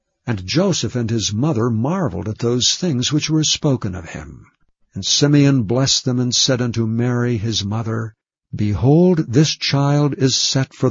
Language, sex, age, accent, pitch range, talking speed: English, male, 60-79, American, 115-150 Hz, 165 wpm